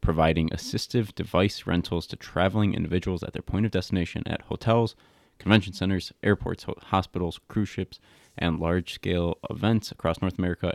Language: English